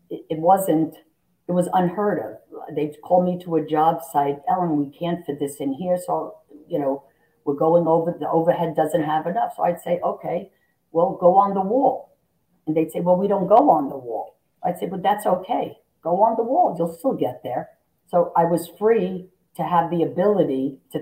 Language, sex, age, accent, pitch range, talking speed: English, female, 50-69, American, 150-180 Hz, 205 wpm